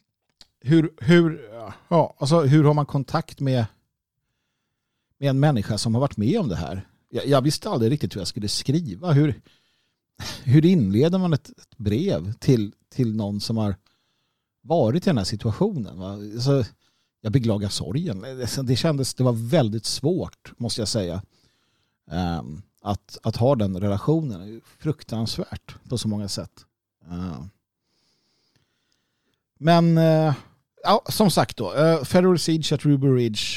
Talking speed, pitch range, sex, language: 145 wpm, 110-145 Hz, male, Swedish